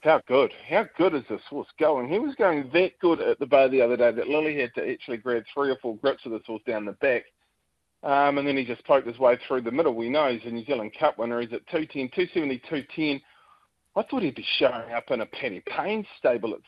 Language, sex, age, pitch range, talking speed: English, male, 40-59, 120-150 Hz, 250 wpm